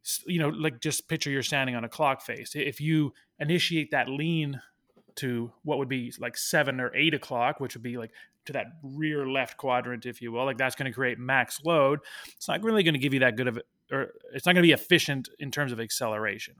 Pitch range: 120-145 Hz